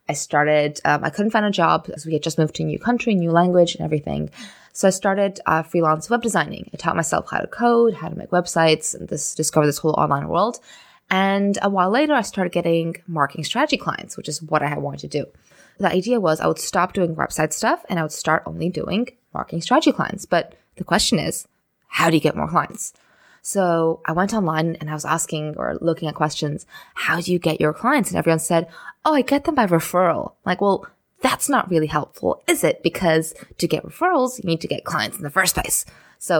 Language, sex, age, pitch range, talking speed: English, female, 20-39, 155-205 Hz, 230 wpm